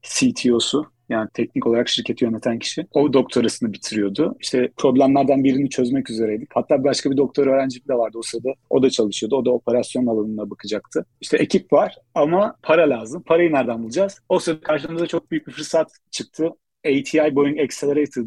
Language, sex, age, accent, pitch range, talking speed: Turkish, male, 40-59, native, 120-150 Hz, 170 wpm